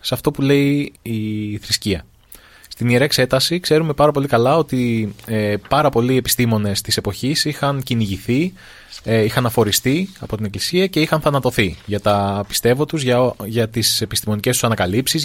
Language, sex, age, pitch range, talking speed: Greek, male, 20-39, 105-135 Hz, 160 wpm